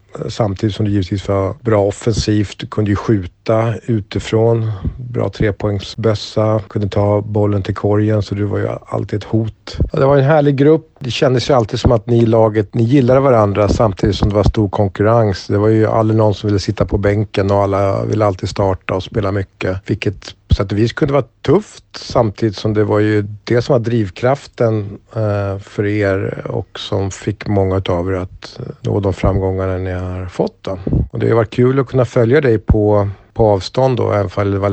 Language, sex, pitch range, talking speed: Swedish, male, 100-115 Hz, 200 wpm